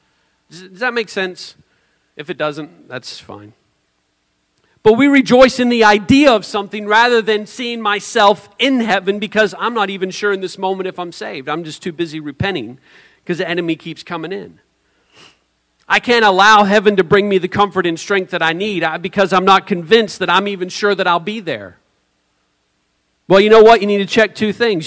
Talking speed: 195 wpm